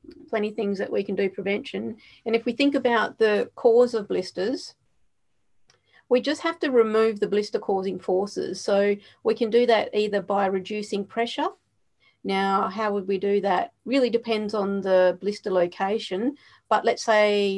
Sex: female